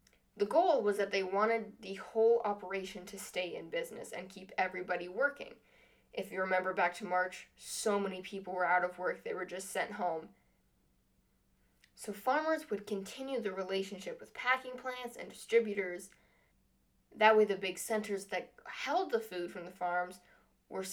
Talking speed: 170 wpm